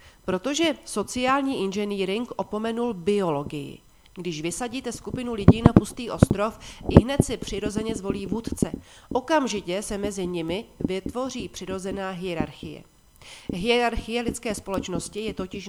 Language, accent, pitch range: Czech, native, 175-230 Hz